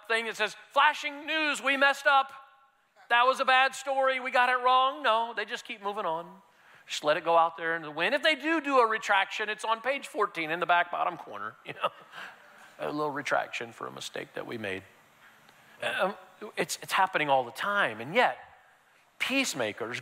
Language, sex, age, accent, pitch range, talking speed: English, male, 40-59, American, 155-235 Hz, 200 wpm